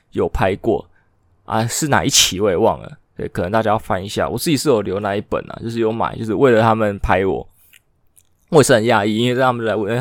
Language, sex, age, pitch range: Chinese, male, 20-39, 100-120 Hz